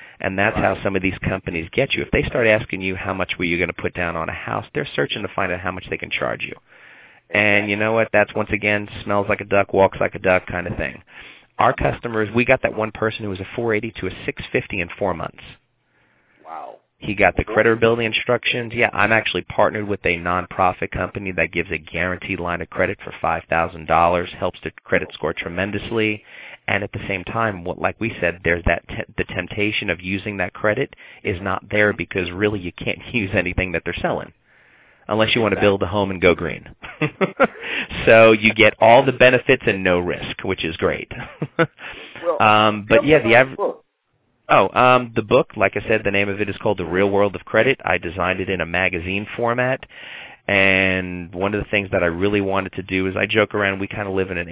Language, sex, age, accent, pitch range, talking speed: English, male, 30-49, American, 90-110 Hz, 220 wpm